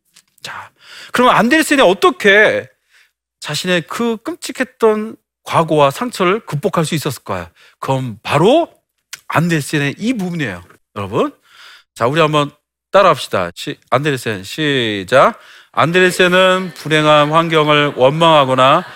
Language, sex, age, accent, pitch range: Korean, male, 40-59, native, 150-240 Hz